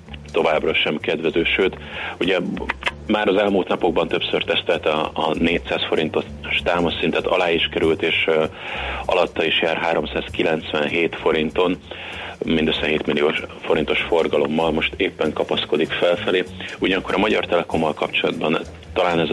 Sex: male